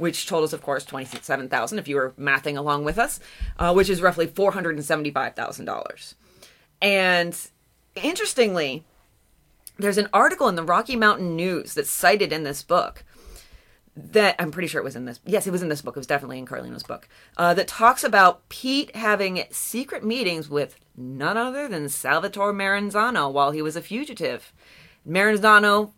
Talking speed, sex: 165 wpm, female